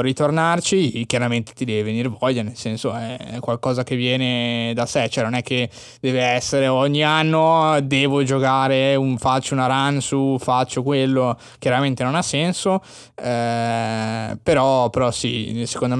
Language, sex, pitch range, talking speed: Italian, male, 120-140 Hz, 150 wpm